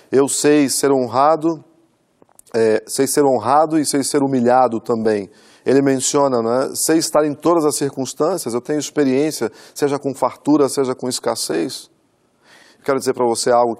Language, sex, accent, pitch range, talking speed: Portuguese, male, Brazilian, 120-140 Hz, 150 wpm